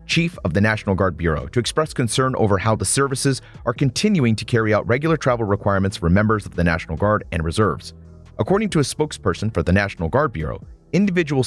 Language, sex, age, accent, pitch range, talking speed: English, male, 30-49, American, 90-120 Hz, 205 wpm